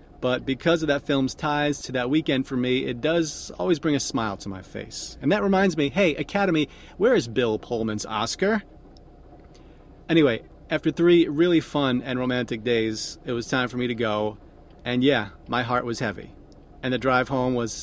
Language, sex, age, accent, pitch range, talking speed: English, male, 40-59, American, 110-145 Hz, 190 wpm